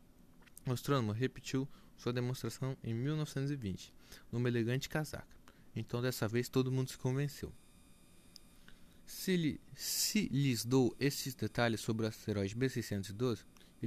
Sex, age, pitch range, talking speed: male, 20-39, 110-140 Hz, 125 wpm